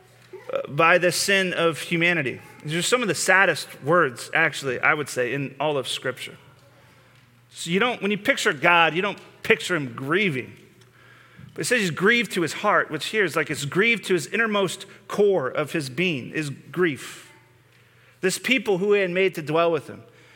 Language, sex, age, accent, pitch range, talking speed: English, male, 40-59, American, 145-195 Hz, 190 wpm